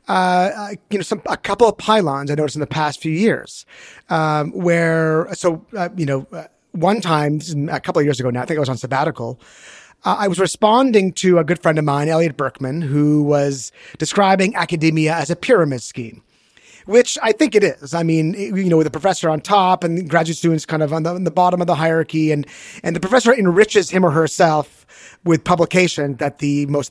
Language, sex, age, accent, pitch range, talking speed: English, male, 30-49, American, 145-185 Hz, 210 wpm